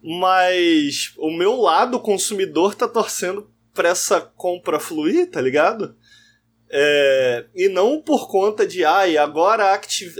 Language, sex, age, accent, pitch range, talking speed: Portuguese, male, 20-39, Brazilian, 150-245 Hz, 135 wpm